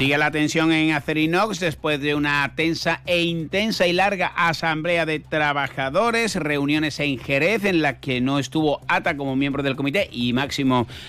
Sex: male